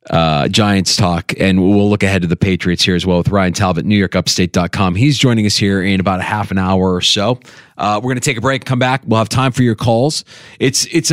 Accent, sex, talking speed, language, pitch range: American, male, 250 wpm, English, 105-150 Hz